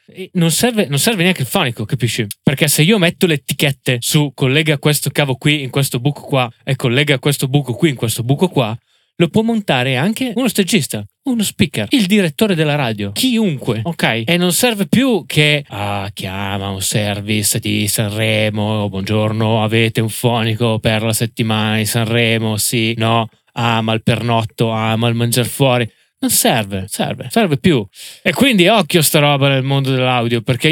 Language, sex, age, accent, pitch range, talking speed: Italian, male, 20-39, native, 115-150 Hz, 170 wpm